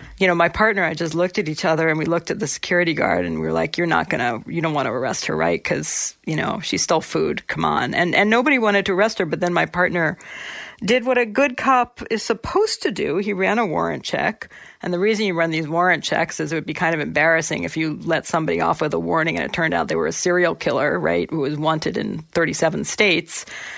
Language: English